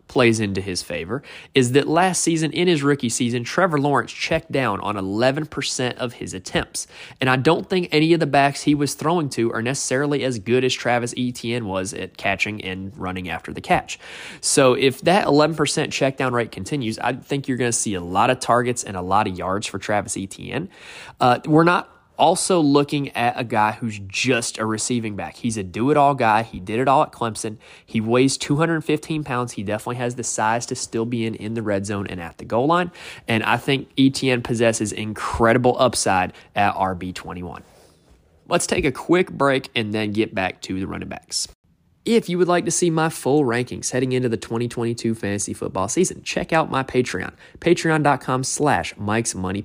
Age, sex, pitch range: 20-39, male, 105-145 Hz